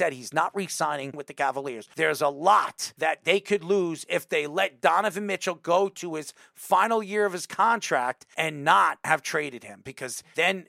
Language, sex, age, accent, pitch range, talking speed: English, male, 40-59, American, 150-205 Hz, 185 wpm